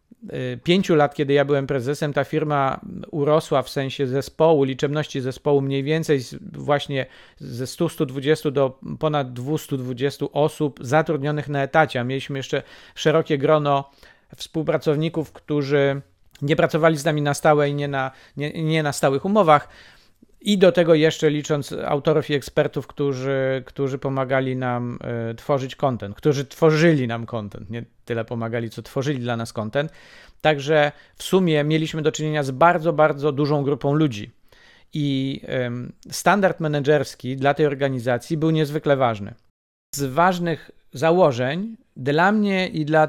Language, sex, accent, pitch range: Polish, male, native, 135-155 Hz